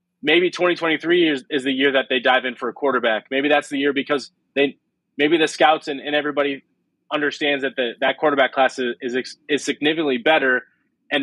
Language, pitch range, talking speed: English, 130-150 Hz, 200 wpm